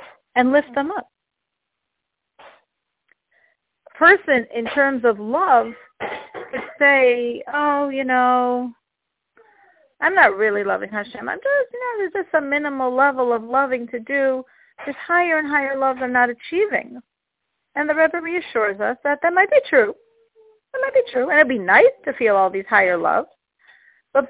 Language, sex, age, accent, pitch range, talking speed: English, female, 40-59, American, 240-320 Hz, 165 wpm